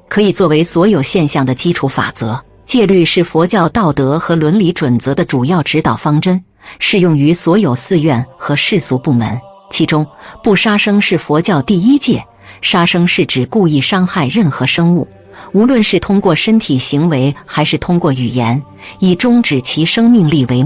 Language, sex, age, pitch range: Chinese, female, 50-69, 145-200 Hz